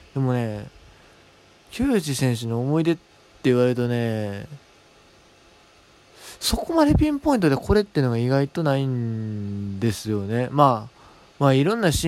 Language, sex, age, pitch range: Japanese, male, 20-39, 110-140 Hz